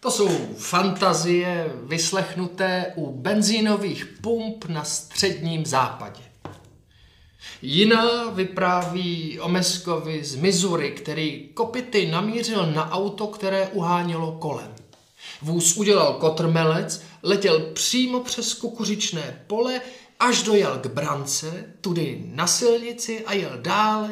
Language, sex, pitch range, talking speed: Czech, male, 155-205 Hz, 105 wpm